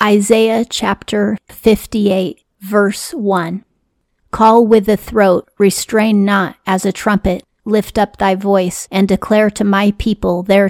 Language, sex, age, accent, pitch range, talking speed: English, female, 40-59, American, 185-210 Hz, 135 wpm